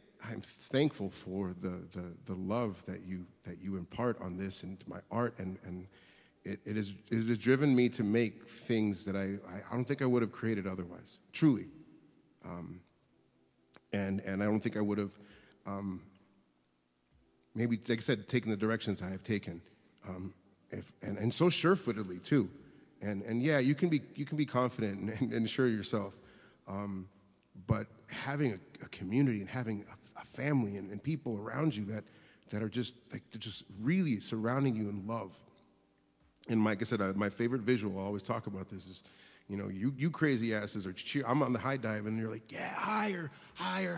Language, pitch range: English, 100-150 Hz